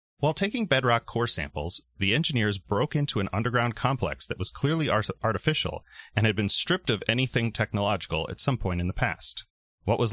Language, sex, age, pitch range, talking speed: English, male, 30-49, 95-125 Hz, 185 wpm